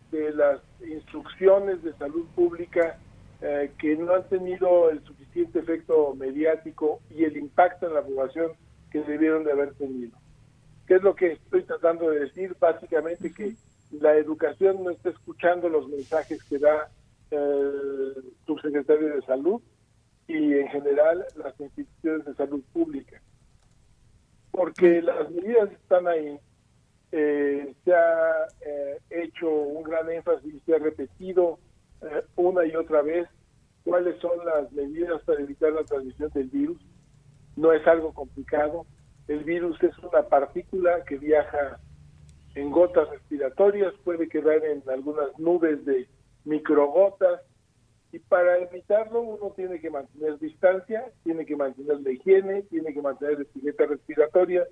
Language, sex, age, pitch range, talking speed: Spanish, male, 50-69, 140-175 Hz, 145 wpm